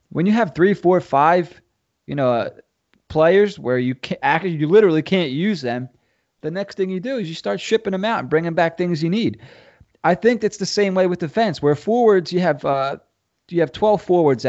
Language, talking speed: English, 220 wpm